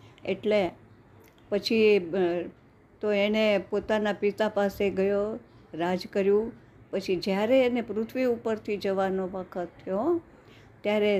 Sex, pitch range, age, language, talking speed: female, 185-215 Hz, 50-69, Gujarati, 95 wpm